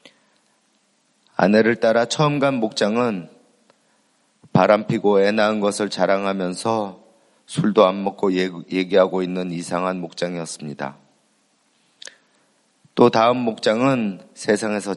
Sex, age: male, 30-49